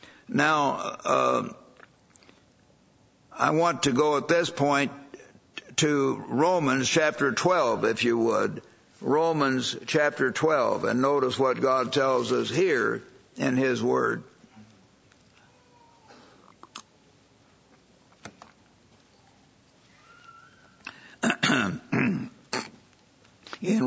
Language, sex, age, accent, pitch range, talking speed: English, male, 60-79, American, 130-160 Hz, 75 wpm